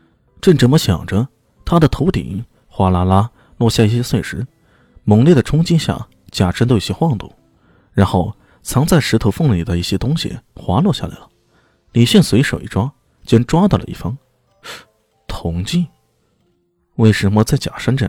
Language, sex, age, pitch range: Chinese, male, 20-39, 90-130 Hz